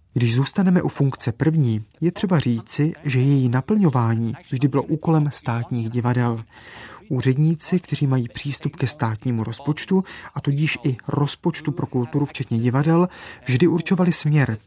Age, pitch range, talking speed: 30-49, 125-160 Hz, 140 wpm